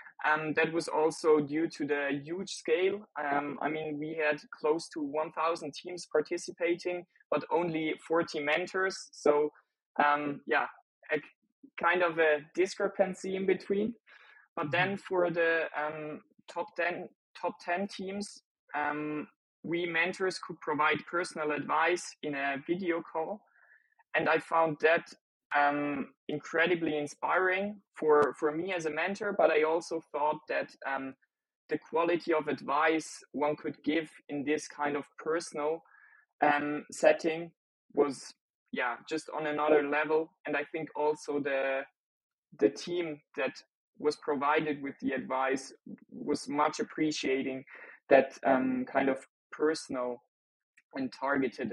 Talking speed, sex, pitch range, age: 135 wpm, male, 150-175 Hz, 20-39